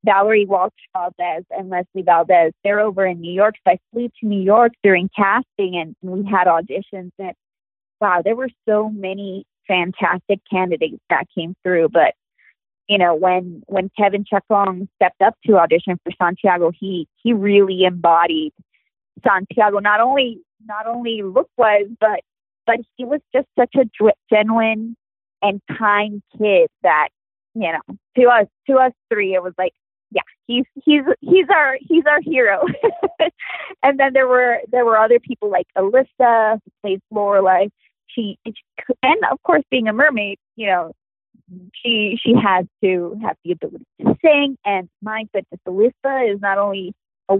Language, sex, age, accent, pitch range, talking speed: English, female, 20-39, American, 185-235 Hz, 160 wpm